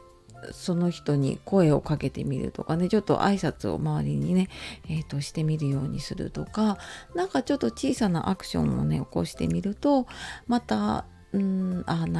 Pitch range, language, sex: 150-220 Hz, Japanese, female